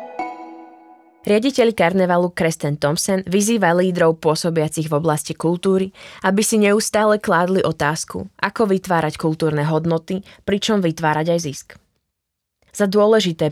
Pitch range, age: 155-190 Hz, 20-39